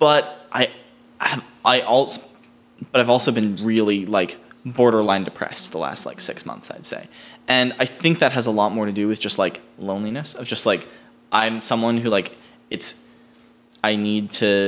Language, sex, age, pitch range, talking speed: English, male, 20-39, 100-120 Hz, 190 wpm